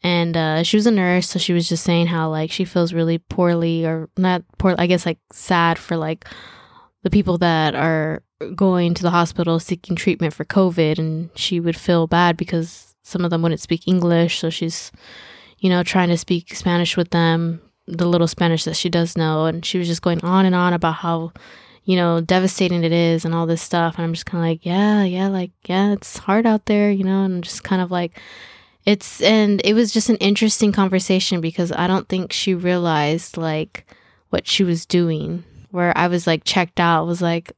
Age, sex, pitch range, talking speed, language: 20-39, female, 170-200 Hz, 215 wpm, English